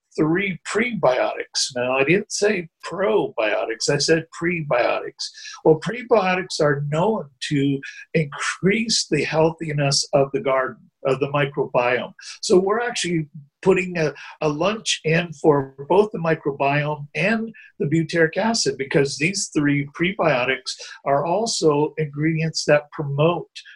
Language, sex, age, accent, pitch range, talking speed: English, male, 50-69, American, 140-175 Hz, 125 wpm